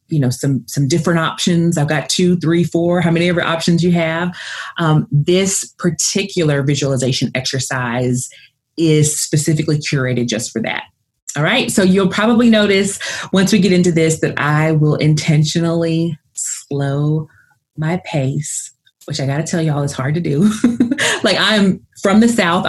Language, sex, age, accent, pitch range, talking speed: English, female, 30-49, American, 135-170 Hz, 160 wpm